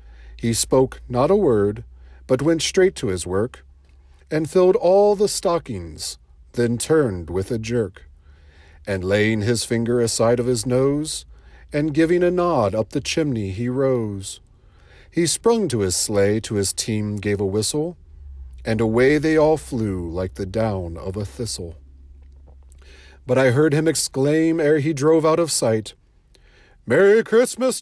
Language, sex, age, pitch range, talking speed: English, male, 40-59, 95-125 Hz, 155 wpm